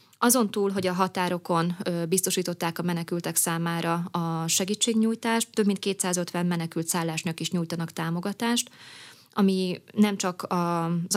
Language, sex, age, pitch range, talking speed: Hungarian, female, 20-39, 170-190 Hz, 125 wpm